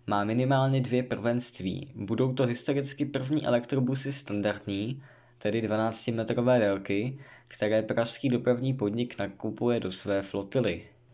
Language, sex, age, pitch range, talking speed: Czech, male, 20-39, 110-130 Hz, 115 wpm